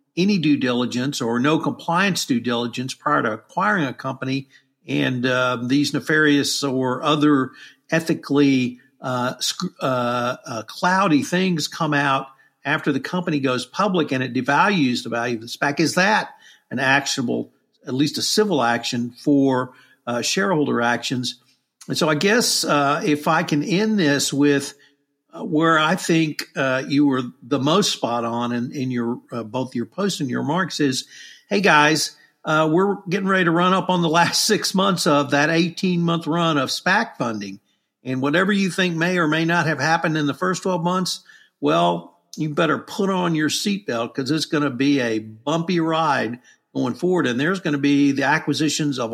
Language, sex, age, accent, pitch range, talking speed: English, male, 50-69, American, 130-170 Hz, 180 wpm